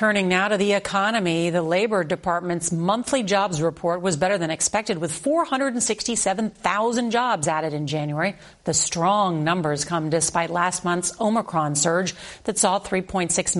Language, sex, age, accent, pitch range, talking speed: English, female, 40-59, American, 165-205 Hz, 145 wpm